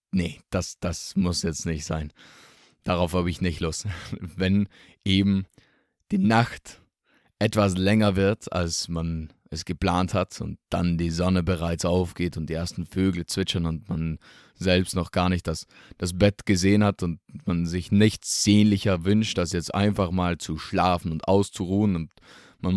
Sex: male